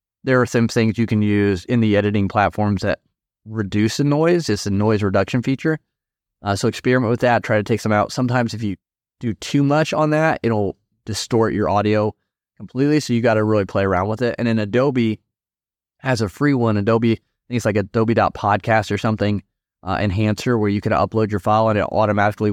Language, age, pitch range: English, 20-39, 100-115 Hz